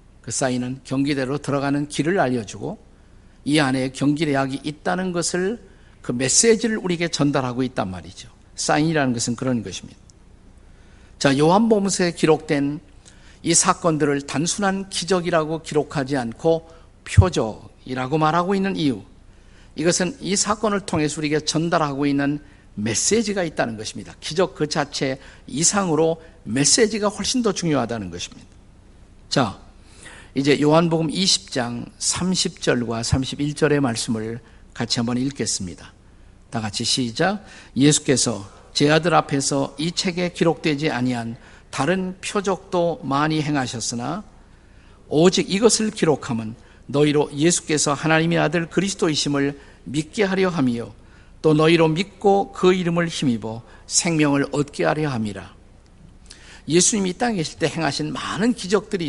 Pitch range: 115-170 Hz